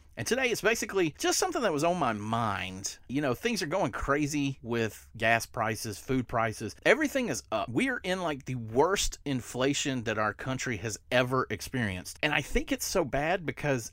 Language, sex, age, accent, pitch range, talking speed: English, male, 40-59, American, 105-140 Hz, 195 wpm